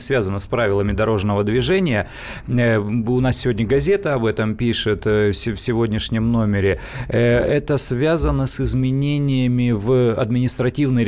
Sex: male